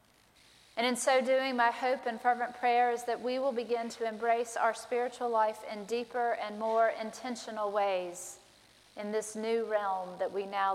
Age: 40-59